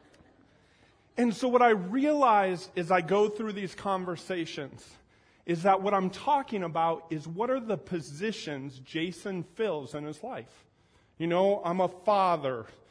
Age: 40-59